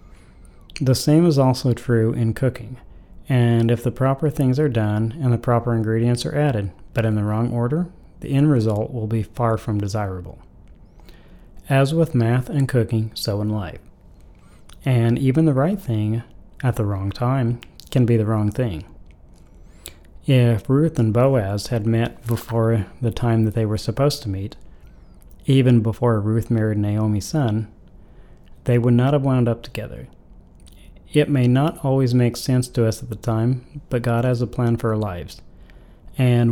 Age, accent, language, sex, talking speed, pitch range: 30-49, American, English, male, 170 wpm, 110-130 Hz